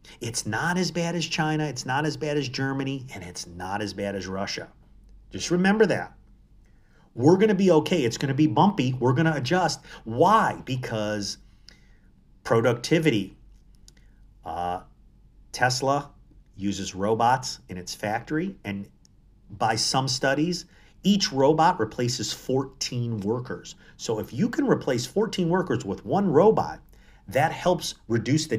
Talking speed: 145 wpm